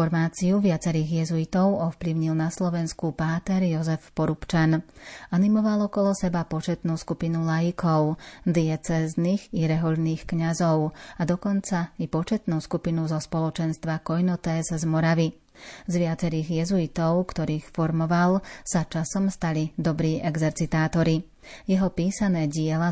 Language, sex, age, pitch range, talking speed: Slovak, female, 30-49, 160-175 Hz, 110 wpm